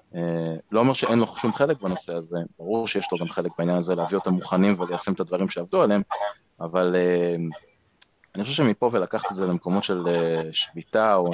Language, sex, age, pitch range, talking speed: Hebrew, male, 20-39, 85-100 Hz, 195 wpm